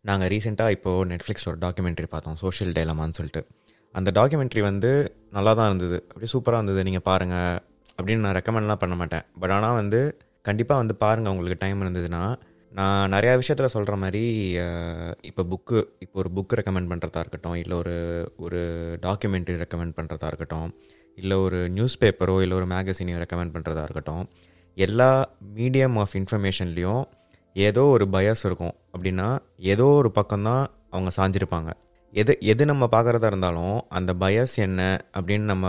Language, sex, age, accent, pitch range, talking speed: Tamil, male, 20-39, native, 90-110 Hz, 140 wpm